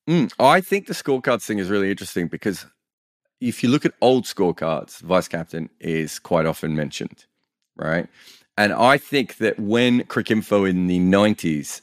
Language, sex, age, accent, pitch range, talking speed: English, male, 30-49, Australian, 85-105 Hz, 155 wpm